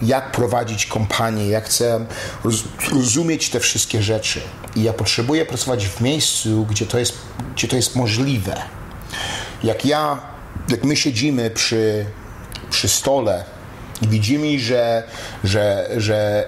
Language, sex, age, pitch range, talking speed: Polish, male, 40-59, 110-135 Hz, 125 wpm